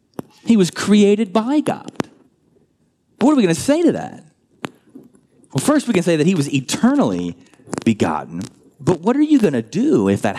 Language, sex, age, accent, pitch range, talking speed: English, male, 30-49, American, 100-155 Hz, 185 wpm